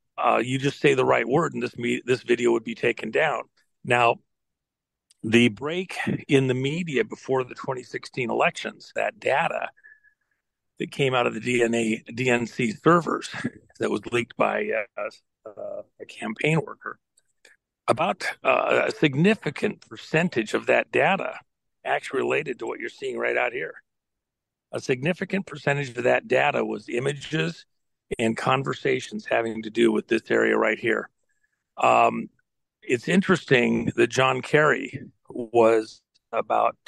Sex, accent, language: male, American, English